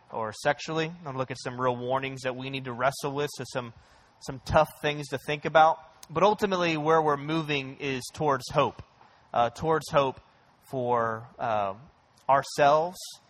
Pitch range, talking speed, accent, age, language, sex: 125-150 Hz, 170 wpm, American, 20-39, English, male